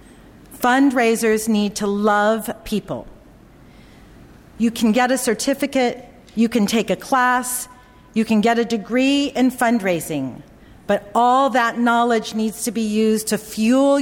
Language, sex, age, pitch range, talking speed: English, female, 40-59, 220-270 Hz, 135 wpm